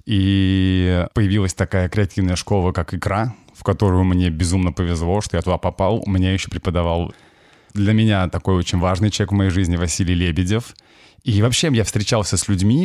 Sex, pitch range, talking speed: male, 90-110 Hz, 170 wpm